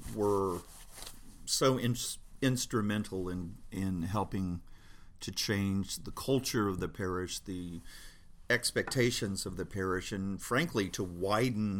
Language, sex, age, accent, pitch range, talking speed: English, male, 50-69, American, 95-110 Hz, 110 wpm